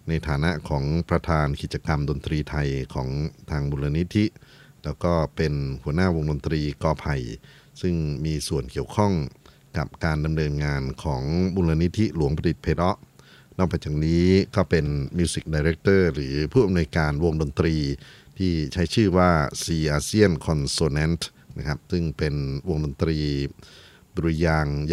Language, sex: Thai, male